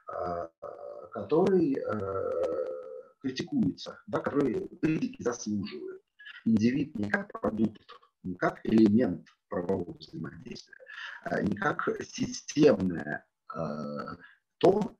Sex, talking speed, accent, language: male, 75 wpm, native, Russian